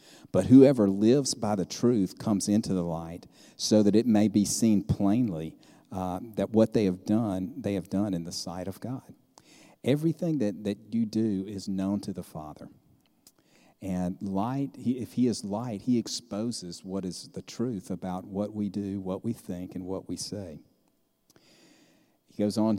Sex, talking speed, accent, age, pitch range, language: male, 175 wpm, American, 50-69, 95-110 Hz, English